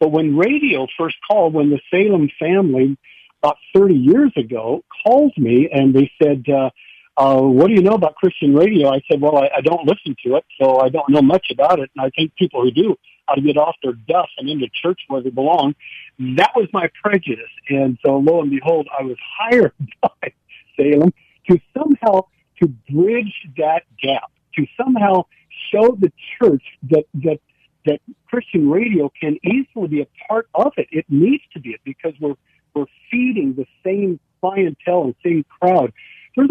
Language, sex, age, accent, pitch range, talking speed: English, male, 60-79, American, 145-220 Hz, 185 wpm